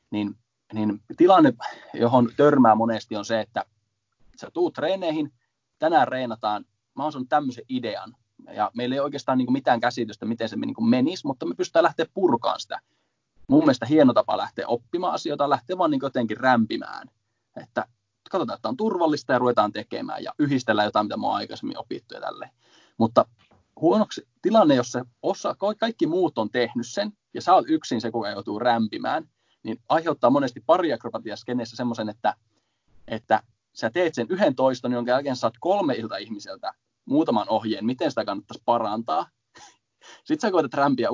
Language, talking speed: Finnish, 165 wpm